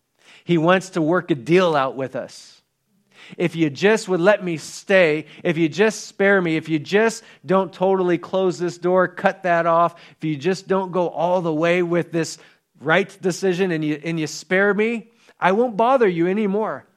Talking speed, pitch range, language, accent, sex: 195 wpm, 160-200 Hz, English, American, male